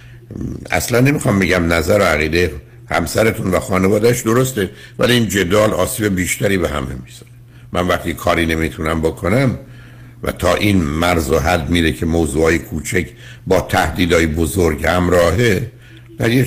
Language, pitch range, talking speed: Persian, 85-120 Hz, 140 wpm